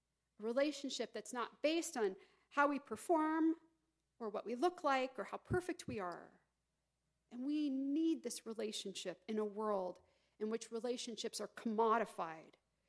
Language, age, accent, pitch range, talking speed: English, 50-69, American, 235-315 Hz, 150 wpm